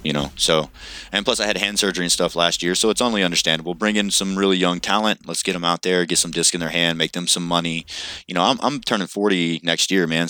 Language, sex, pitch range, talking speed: English, male, 85-95 Hz, 275 wpm